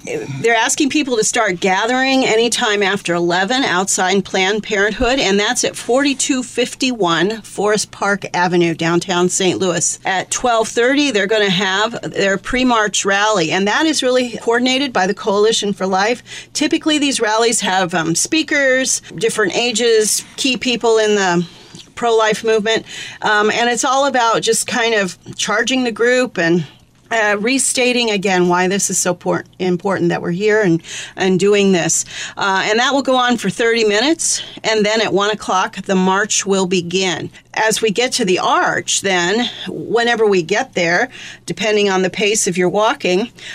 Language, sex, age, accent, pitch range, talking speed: English, female, 40-59, American, 190-235 Hz, 165 wpm